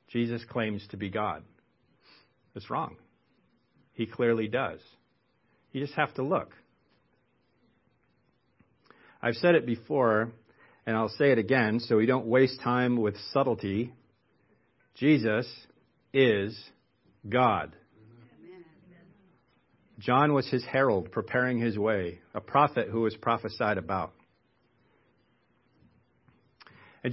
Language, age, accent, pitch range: English, 50-69, American, 110-145 Hz